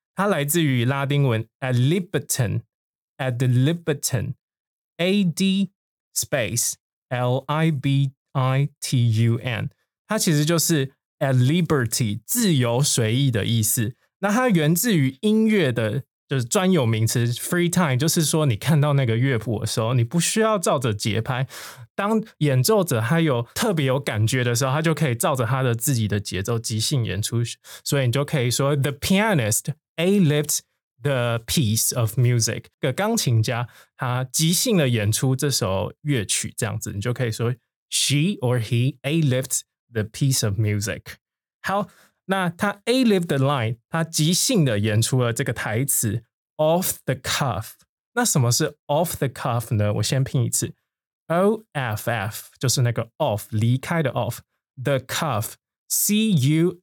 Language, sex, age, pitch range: Chinese, male, 20-39, 120-160 Hz